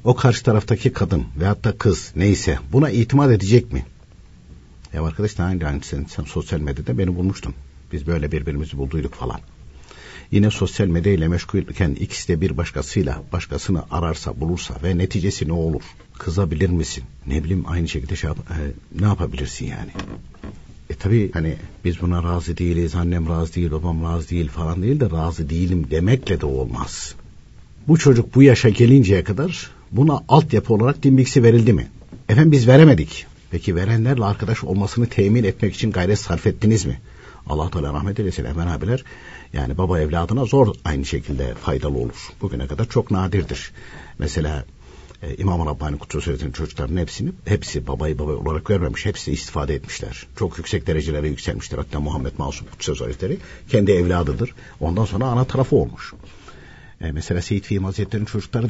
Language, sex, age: Turkish, male, 60-79